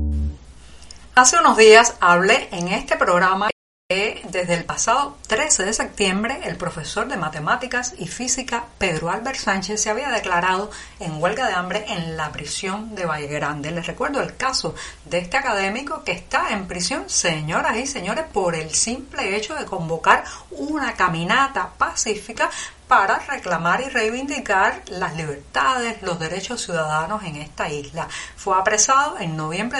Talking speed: 150 wpm